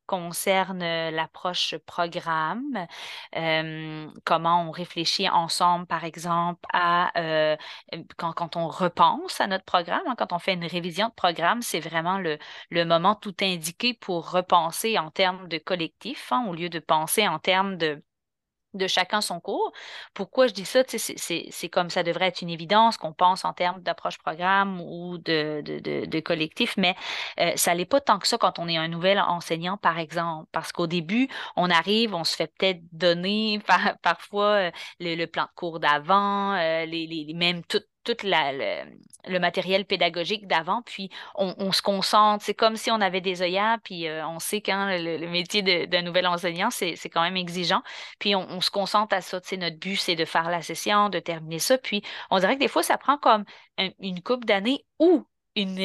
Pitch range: 170-205 Hz